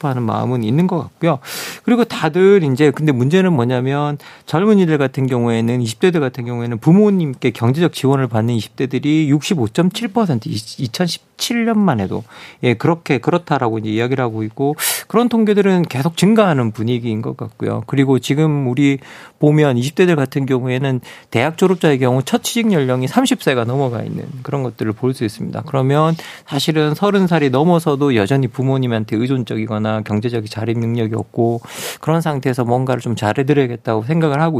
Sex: male